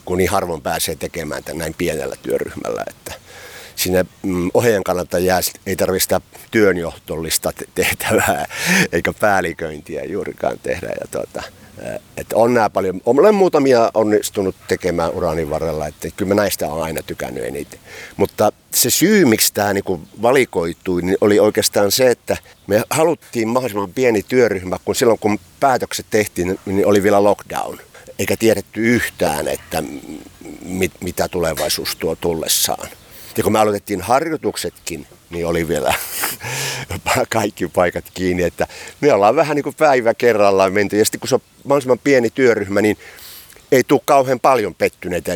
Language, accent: Finnish, native